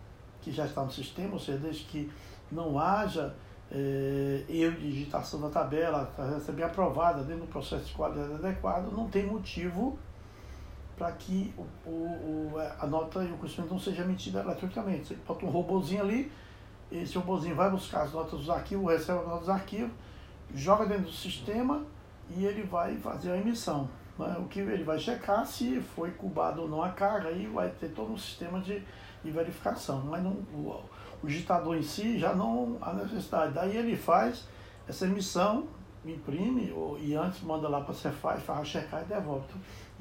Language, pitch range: Portuguese, 140-185 Hz